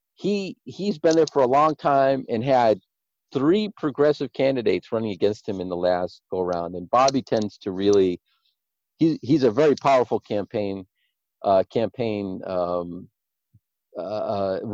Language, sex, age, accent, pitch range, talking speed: English, male, 50-69, American, 110-160 Hz, 145 wpm